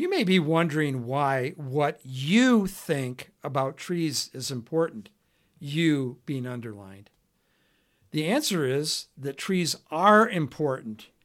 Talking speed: 115 wpm